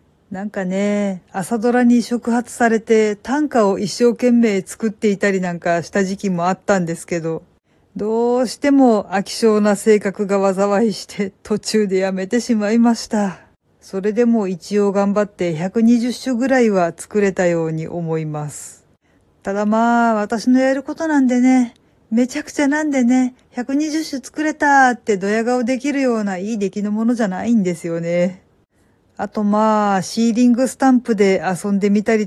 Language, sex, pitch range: Japanese, female, 190-240 Hz